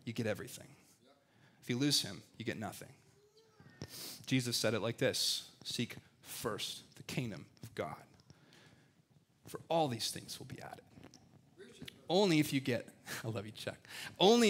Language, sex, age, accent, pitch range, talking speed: English, male, 30-49, American, 115-145 Hz, 155 wpm